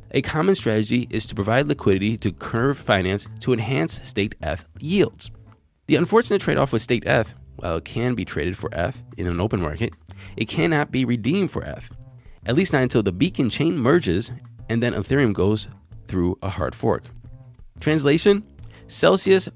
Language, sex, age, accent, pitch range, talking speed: English, male, 20-39, American, 100-130 Hz, 170 wpm